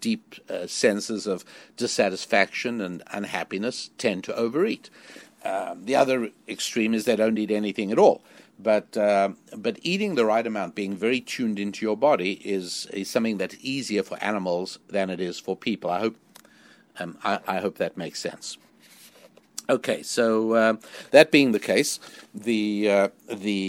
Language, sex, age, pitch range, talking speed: English, male, 60-79, 105-130 Hz, 165 wpm